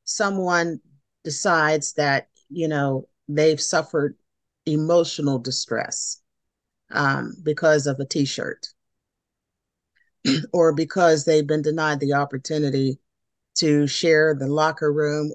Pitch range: 145-175 Hz